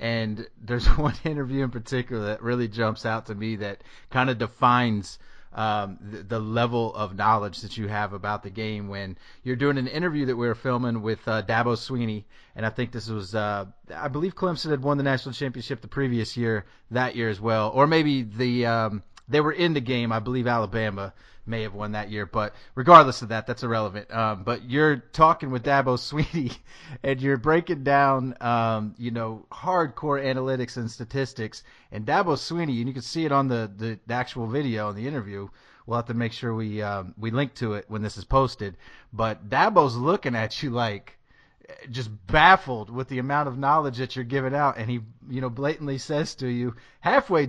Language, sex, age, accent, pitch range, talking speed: English, male, 30-49, American, 110-135 Hz, 200 wpm